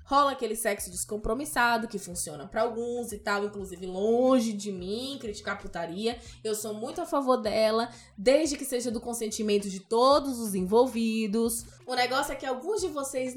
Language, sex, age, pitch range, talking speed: Portuguese, female, 10-29, 215-280 Hz, 170 wpm